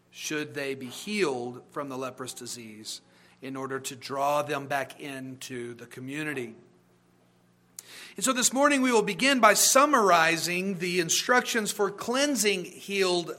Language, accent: English, American